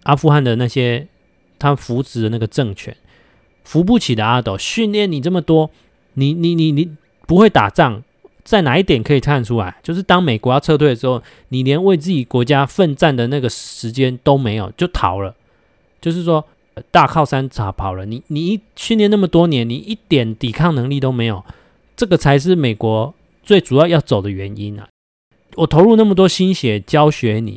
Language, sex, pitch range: Chinese, male, 115-165 Hz